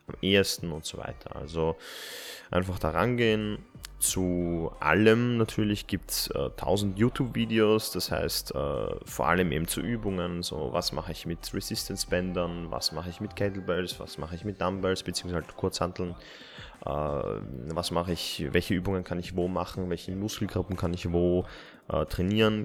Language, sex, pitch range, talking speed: German, male, 80-95 Hz, 150 wpm